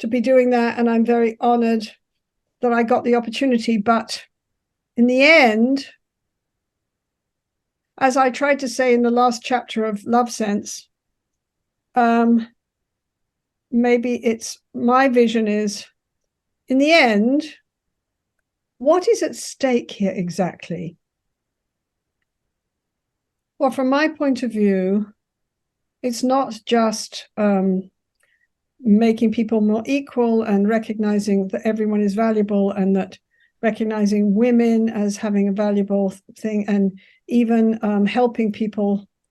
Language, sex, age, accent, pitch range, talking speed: English, female, 60-79, British, 210-250 Hz, 120 wpm